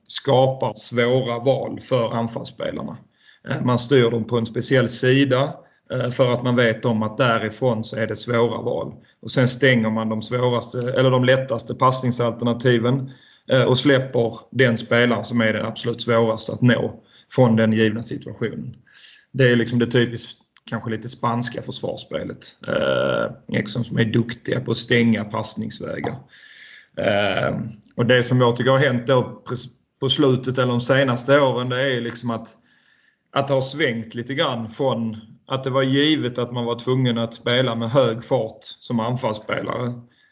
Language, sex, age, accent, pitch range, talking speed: Swedish, male, 30-49, native, 115-130 Hz, 155 wpm